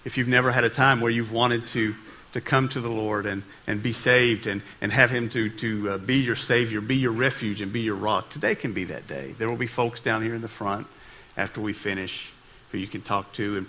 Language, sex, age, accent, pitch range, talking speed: English, male, 50-69, American, 100-125 Hz, 255 wpm